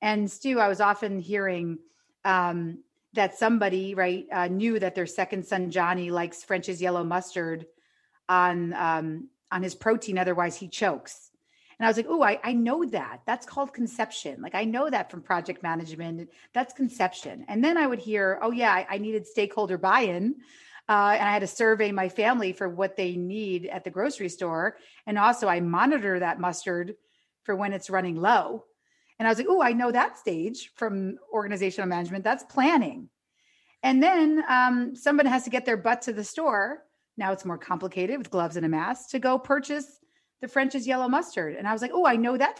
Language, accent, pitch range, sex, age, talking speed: English, American, 185-265 Hz, female, 40-59, 195 wpm